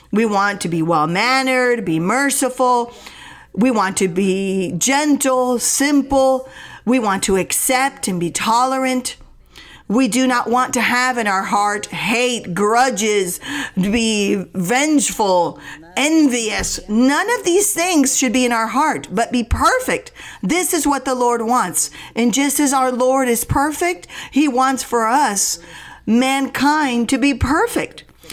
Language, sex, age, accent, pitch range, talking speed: English, female, 50-69, American, 220-280 Hz, 145 wpm